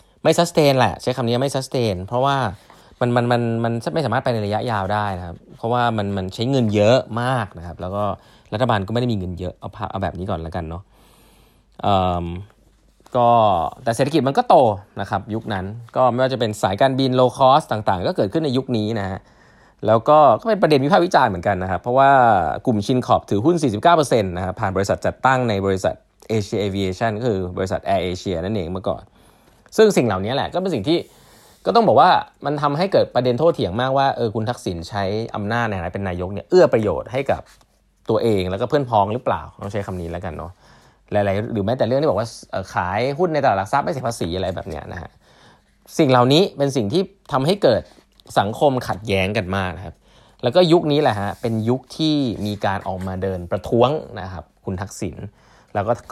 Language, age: Thai, 20-39